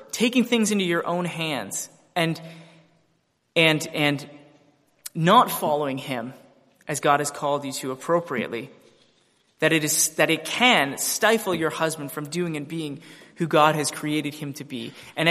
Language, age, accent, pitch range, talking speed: English, 20-39, American, 150-180 Hz, 155 wpm